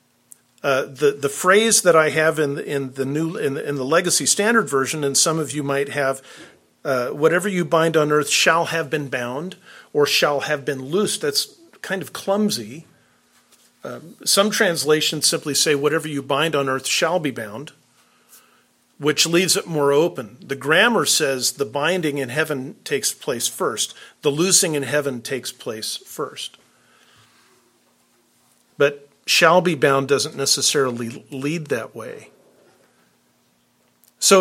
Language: English